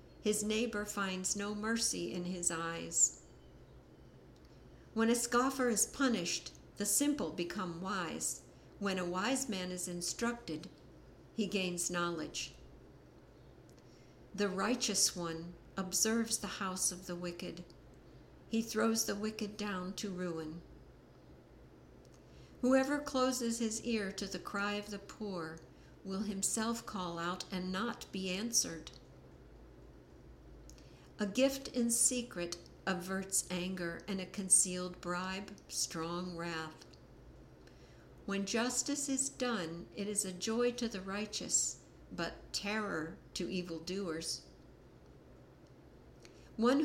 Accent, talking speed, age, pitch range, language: American, 115 wpm, 60-79, 175-220 Hz, English